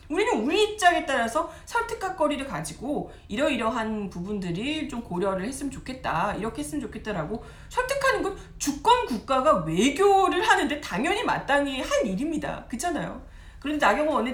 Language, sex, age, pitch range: Korean, female, 40-59, 190-295 Hz